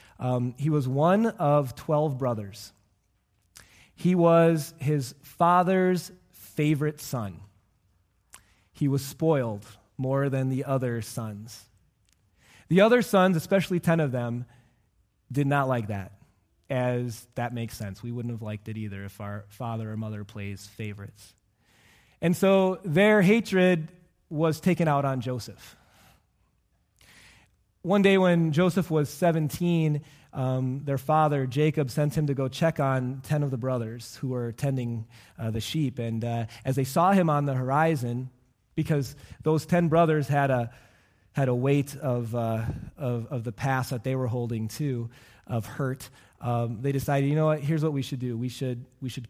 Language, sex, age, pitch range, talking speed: English, male, 20-39, 115-150 Hz, 160 wpm